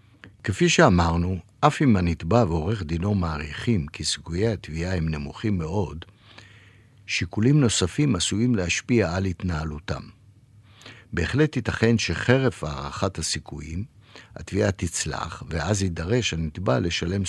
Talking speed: 110 wpm